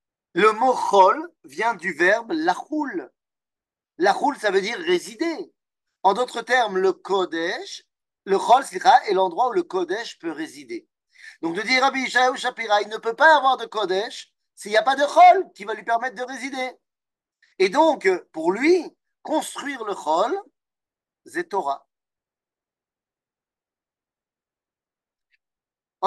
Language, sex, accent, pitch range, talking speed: French, male, French, 220-350 Hz, 140 wpm